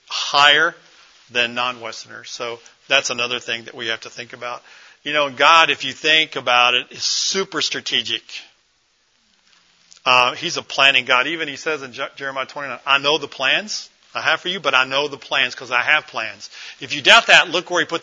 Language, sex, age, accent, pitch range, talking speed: English, male, 40-59, American, 125-155 Hz, 200 wpm